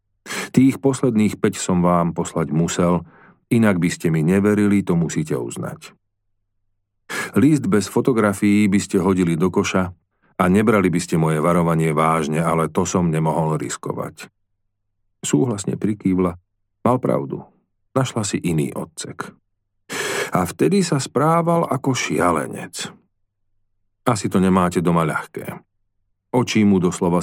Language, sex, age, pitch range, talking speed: Slovak, male, 40-59, 90-105 Hz, 125 wpm